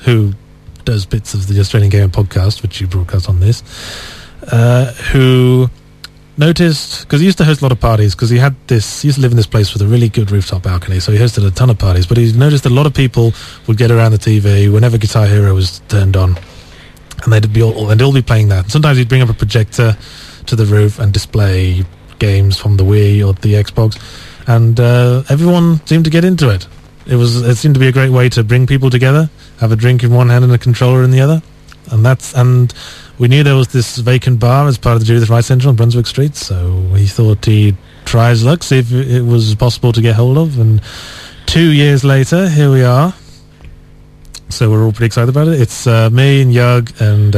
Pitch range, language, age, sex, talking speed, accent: 105-130 Hz, English, 30-49, male, 235 wpm, British